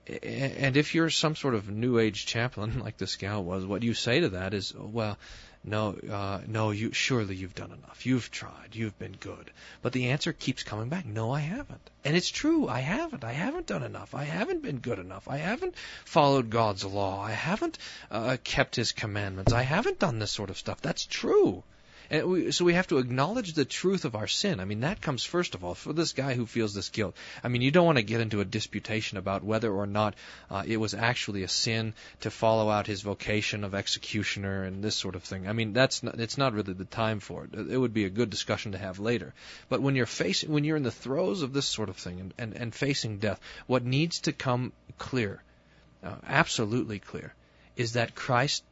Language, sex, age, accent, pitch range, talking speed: English, male, 40-59, American, 100-135 Hz, 225 wpm